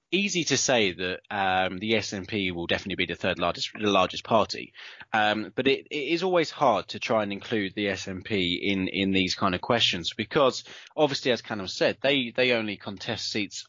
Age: 20-39